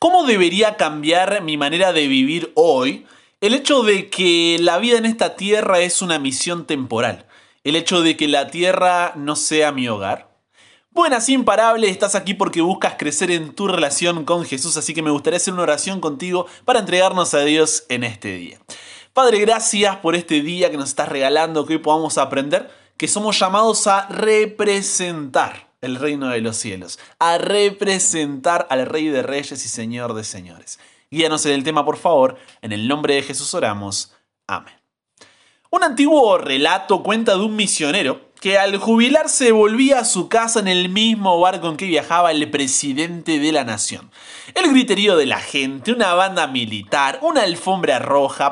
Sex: male